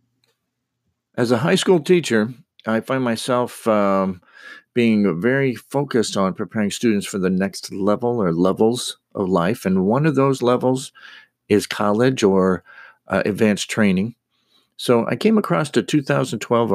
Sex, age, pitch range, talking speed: male, 50-69, 95-130 Hz, 145 wpm